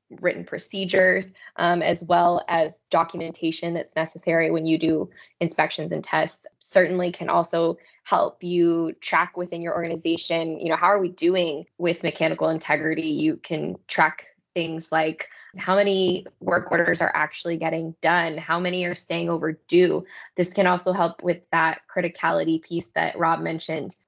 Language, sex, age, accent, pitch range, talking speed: English, female, 20-39, American, 165-185 Hz, 155 wpm